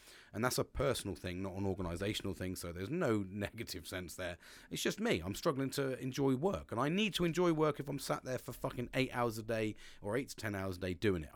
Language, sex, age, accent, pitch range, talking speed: English, male, 30-49, British, 100-140 Hz, 255 wpm